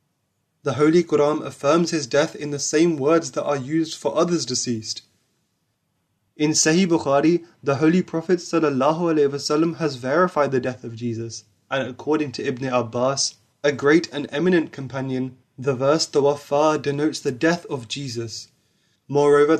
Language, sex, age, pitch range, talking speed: English, male, 20-39, 130-155 Hz, 145 wpm